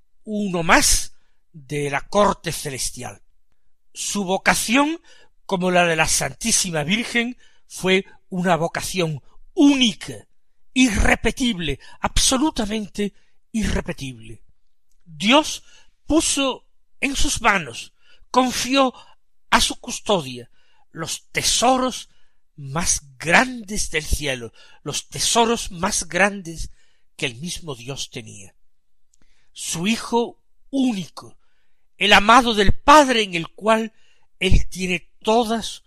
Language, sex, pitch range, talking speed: Spanish, male, 150-225 Hz, 95 wpm